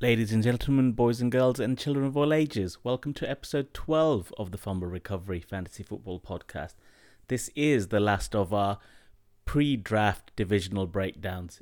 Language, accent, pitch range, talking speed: English, British, 95-115 Hz, 160 wpm